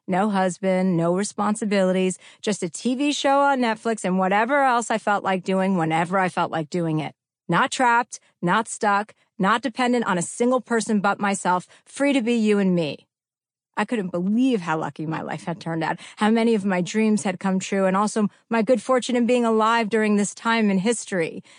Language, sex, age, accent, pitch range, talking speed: English, female, 40-59, American, 180-230 Hz, 200 wpm